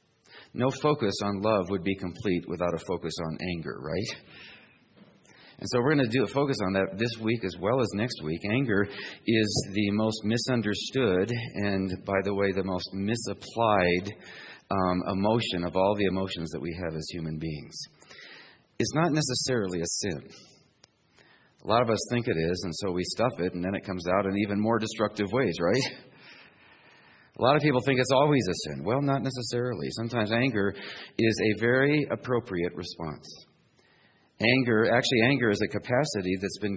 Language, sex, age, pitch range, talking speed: English, male, 40-59, 95-125 Hz, 180 wpm